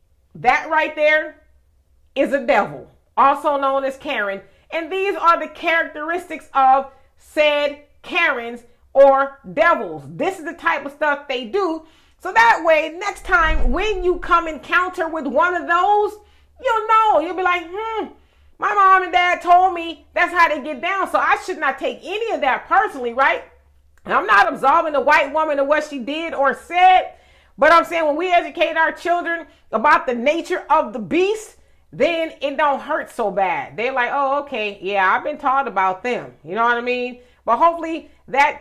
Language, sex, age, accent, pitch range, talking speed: English, female, 40-59, American, 230-330 Hz, 185 wpm